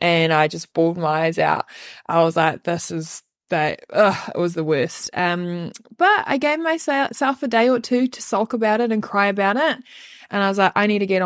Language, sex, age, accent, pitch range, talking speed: English, female, 20-39, Australian, 185-230 Hz, 225 wpm